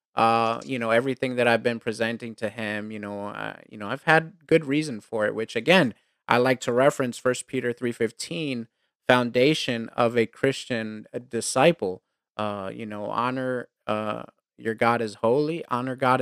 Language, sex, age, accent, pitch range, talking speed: English, male, 30-49, American, 110-140 Hz, 180 wpm